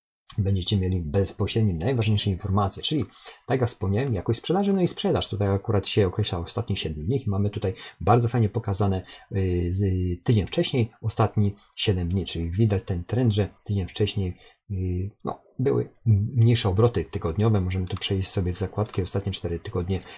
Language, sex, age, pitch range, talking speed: Polish, male, 40-59, 95-120 Hz, 155 wpm